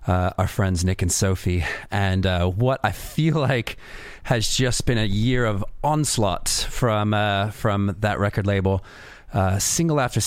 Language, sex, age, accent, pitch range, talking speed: English, male, 30-49, American, 95-115 Hz, 165 wpm